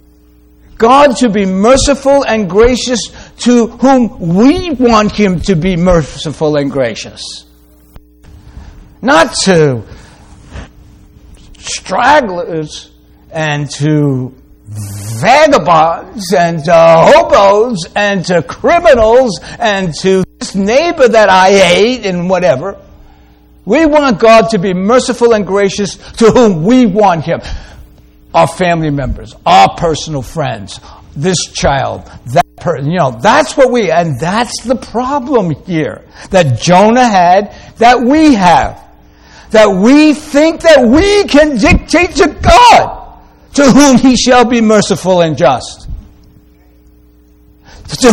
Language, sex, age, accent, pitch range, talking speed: English, male, 60-79, American, 150-245 Hz, 115 wpm